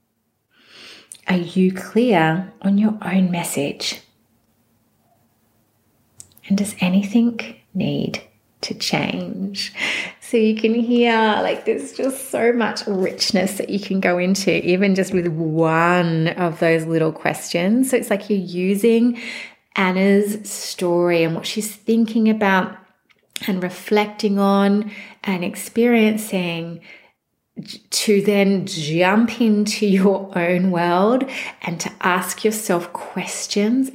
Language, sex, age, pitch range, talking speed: English, female, 30-49, 175-220 Hz, 115 wpm